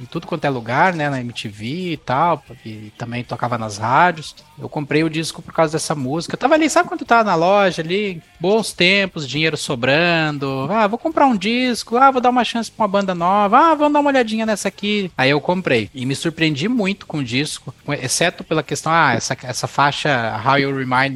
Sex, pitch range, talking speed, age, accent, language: male, 125-185 Hz, 220 wpm, 20-39, Brazilian, Portuguese